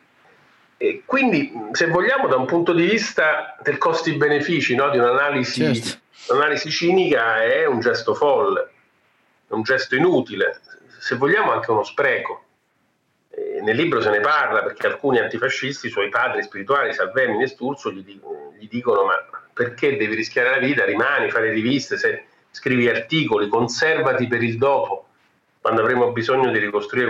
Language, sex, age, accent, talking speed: Italian, male, 40-59, native, 150 wpm